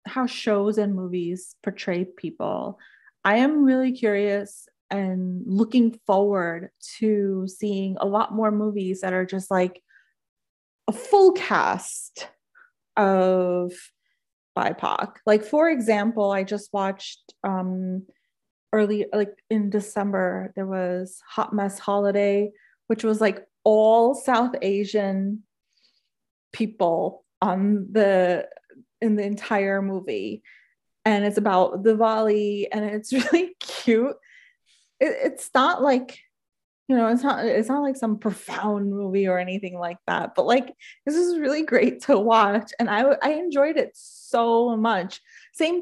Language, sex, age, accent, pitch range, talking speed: English, female, 30-49, American, 195-250 Hz, 130 wpm